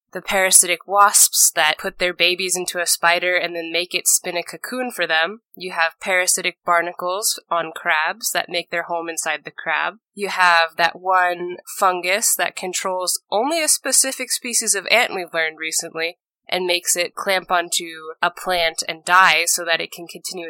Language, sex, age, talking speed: English, female, 20-39, 180 wpm